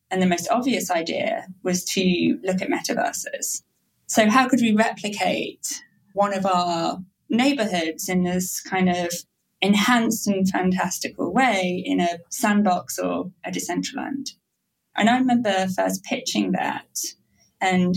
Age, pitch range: 20-39, 180-220 Hz